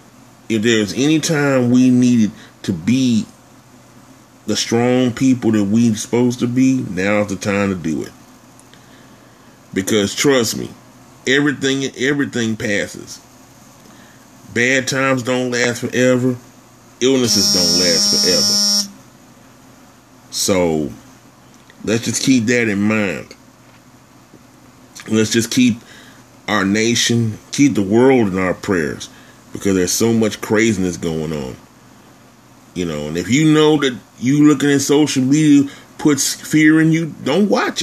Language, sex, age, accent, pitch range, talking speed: English, male, 30-49, American, 110-140 Hz, 125 wpm